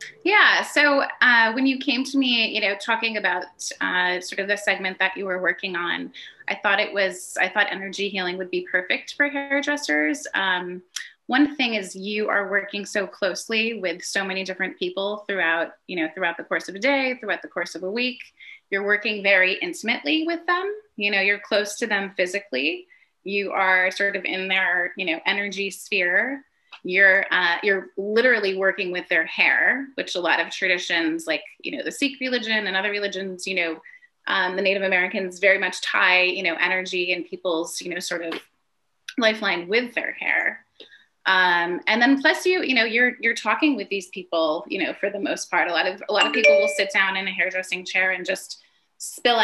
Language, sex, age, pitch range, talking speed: English, female, 30-49, 185-230 Hz, 205 wpm